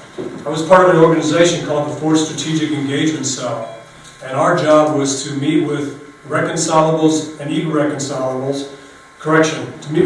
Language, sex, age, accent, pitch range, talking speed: English, male, 40-59, American, 135-155 Hz, 150 wpm